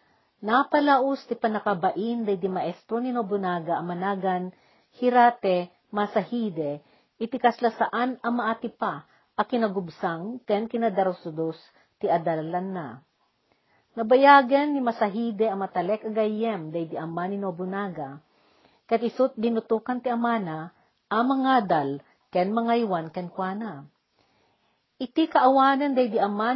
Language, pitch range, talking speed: Filipino, 185-245 Hz, 105 wpm